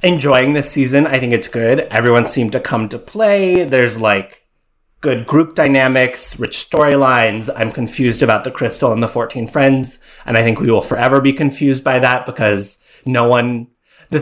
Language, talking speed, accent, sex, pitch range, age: English, 180 wpm, American, male, 115-155 Hz, 30-49